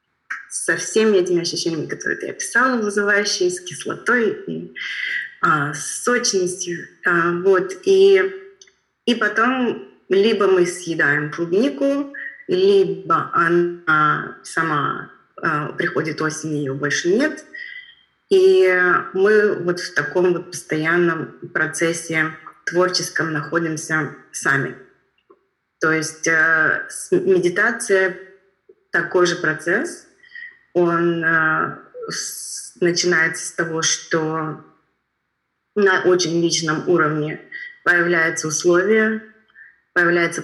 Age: 20-39